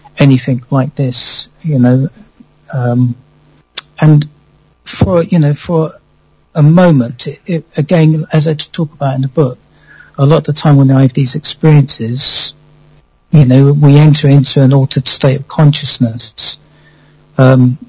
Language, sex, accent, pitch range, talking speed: English, male, British, 130-150 Hz, 140 wpm